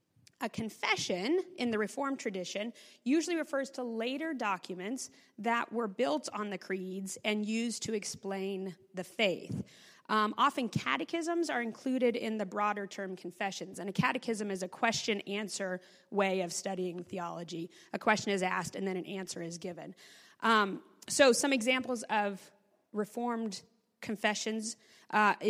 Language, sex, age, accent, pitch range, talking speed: English, female, 30-49, American, 195-240 Hz, 145 wpm